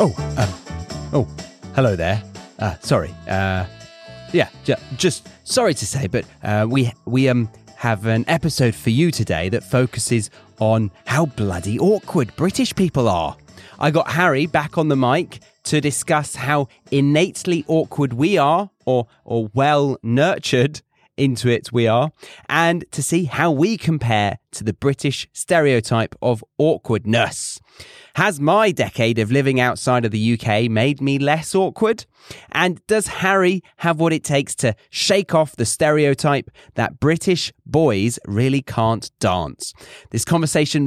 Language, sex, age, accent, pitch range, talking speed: English, male, 30-49, British, 110-155 Hz, 150 wpm